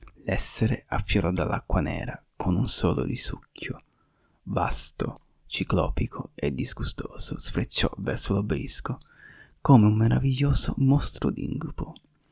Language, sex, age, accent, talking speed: Italian, male, 30-49, native, 95 wpm